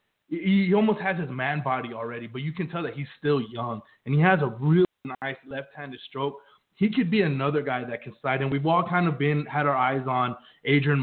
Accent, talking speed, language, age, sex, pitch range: American, 230 wpm, English, 20-39, male, 130-165 Hz